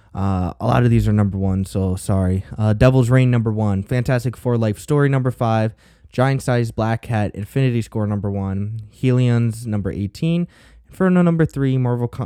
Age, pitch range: 10-29, 100-125 Hz